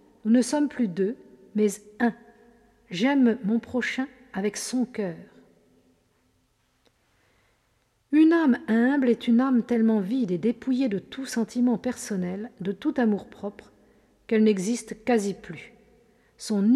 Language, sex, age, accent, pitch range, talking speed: French, female, 50-69, French, 205-250 Hz, 130 wpm